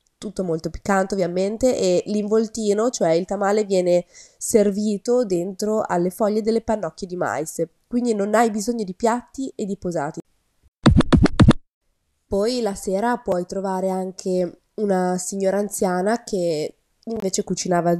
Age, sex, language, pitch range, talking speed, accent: 20-39, female, Italian, 170-210 Hz, 130 wpm, native